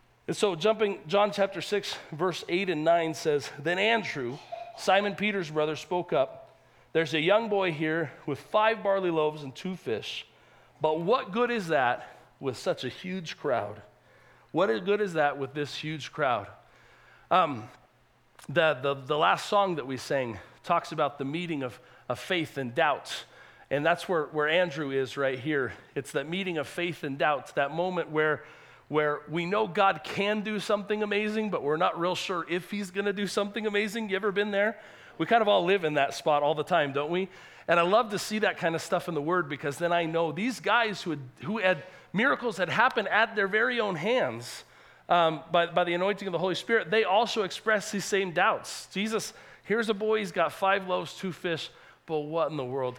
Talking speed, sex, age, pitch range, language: 205 wpm, male, 40-59, 155-205 Hz, English